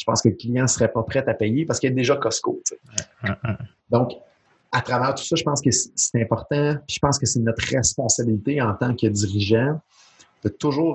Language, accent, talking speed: French, Canadian, 225 wpm